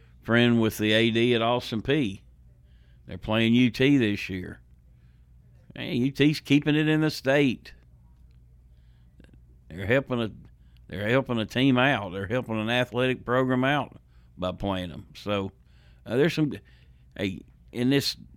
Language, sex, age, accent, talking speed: English, male, 60-79, American, 140 wpm